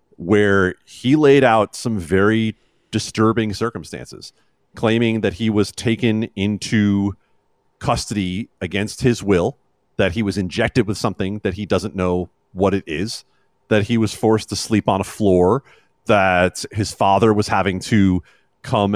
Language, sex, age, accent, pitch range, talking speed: English, male, 30-49, American, 95-125 Hz, 150 wpm